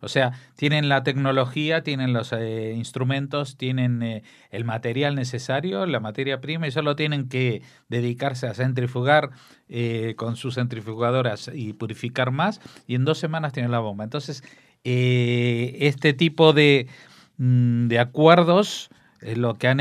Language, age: English, 50-69